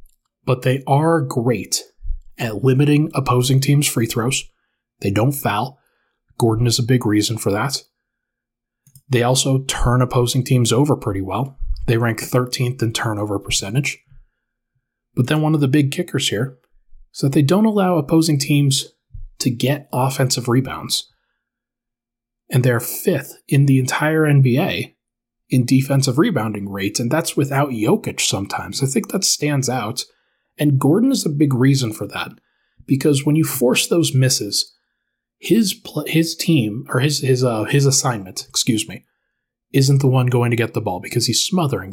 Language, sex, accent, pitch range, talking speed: English, male, American, 120-140 Hz, 160 wpm